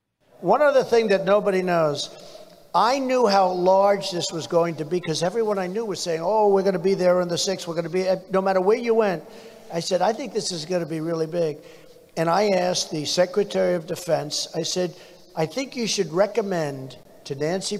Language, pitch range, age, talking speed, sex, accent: English, 145-190 Hz, 60-79, 225 wpm, male, American